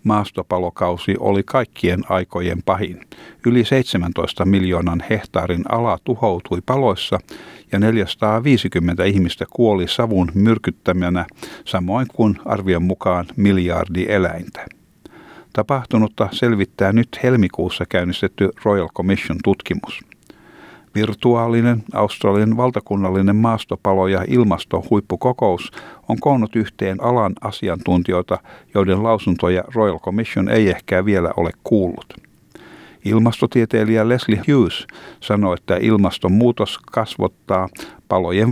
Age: 60-79